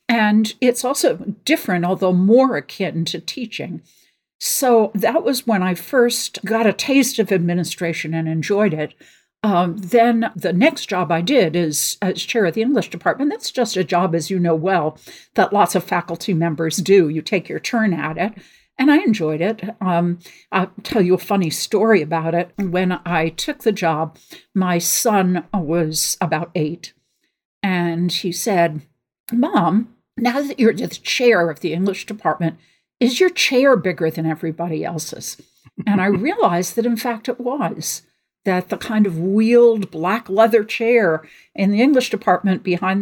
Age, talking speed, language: 60-79, 170 wpm, English